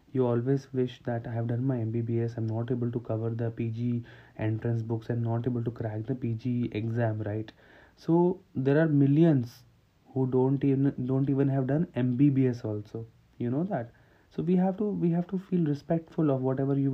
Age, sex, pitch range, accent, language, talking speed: 30-49, male, 120-140 Hz, Indian, English, 195 wpm